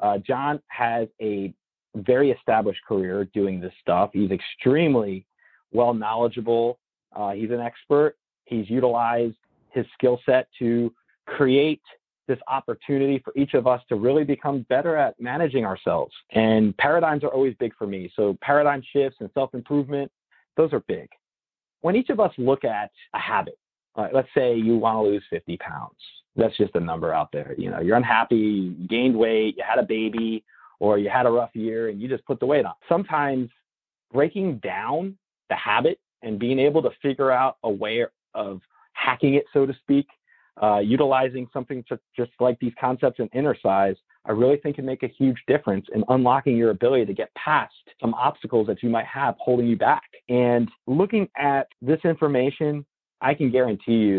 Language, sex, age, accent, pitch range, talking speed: English, male, 40-59, American, 110-140 Hz, 175 wpm